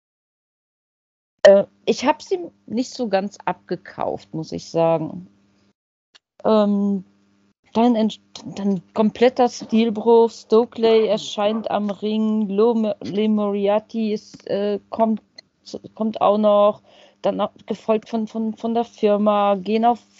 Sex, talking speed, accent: female, 110 wpm, German